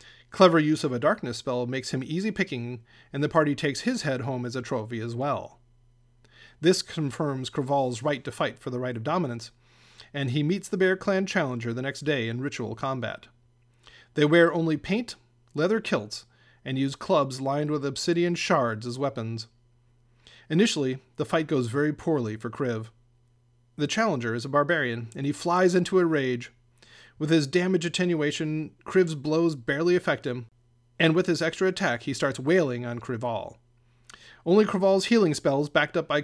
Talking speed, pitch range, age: 175 wpm, 120-165 Hz, 40-59